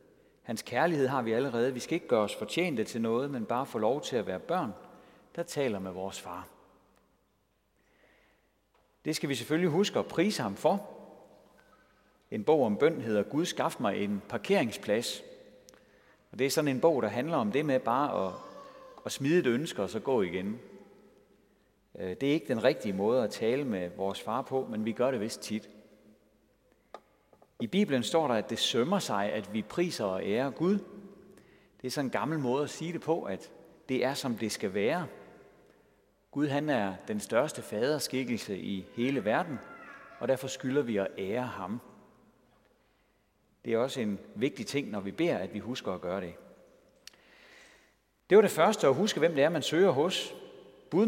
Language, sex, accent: Danish, male, native